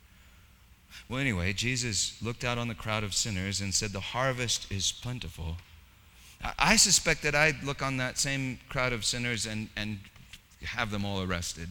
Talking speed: 170 wpm